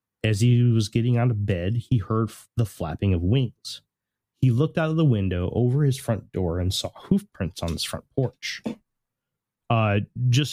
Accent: American